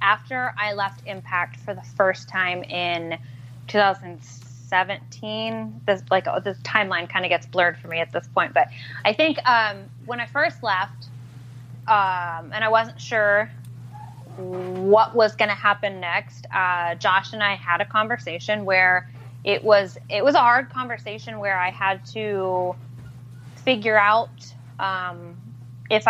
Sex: female